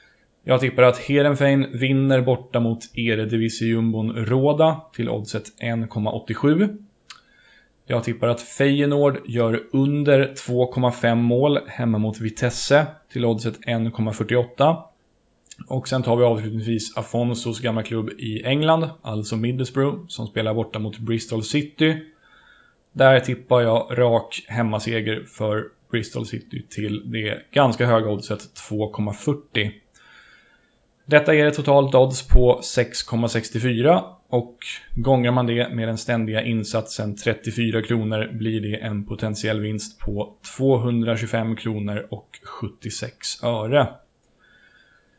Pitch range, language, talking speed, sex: 110-130 Hz, Swedish, 115 wpm, male